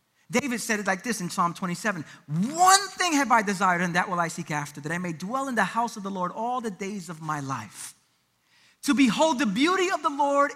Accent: American